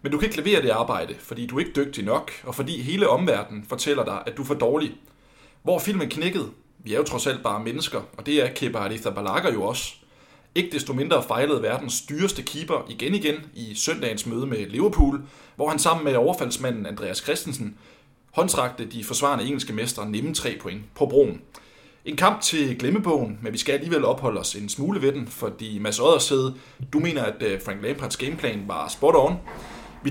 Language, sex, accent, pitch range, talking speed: Danish, male, native, 115-150 Hz, 200 wpm